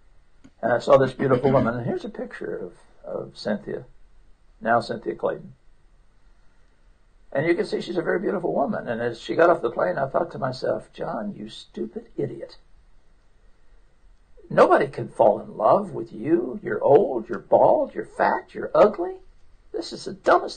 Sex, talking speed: male, 170 wpm